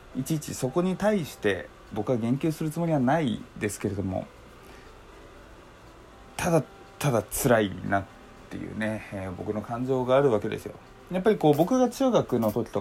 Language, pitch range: Japanese, 105-165 Hz